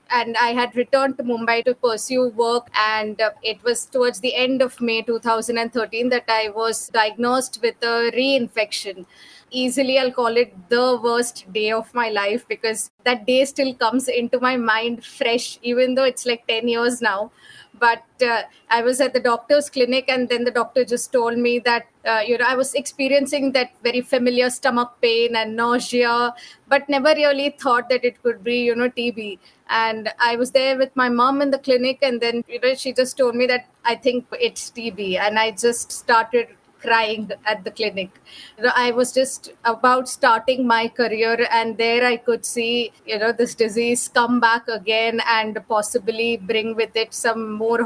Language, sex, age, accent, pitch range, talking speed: English, female, 20-39, Indian, 225-250 Hz, 190 wpm